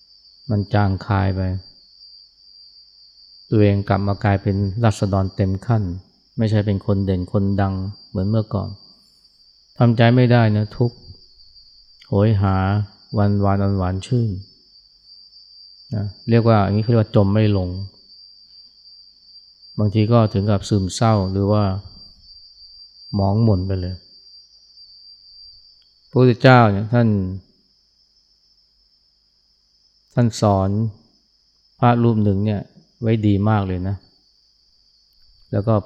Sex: male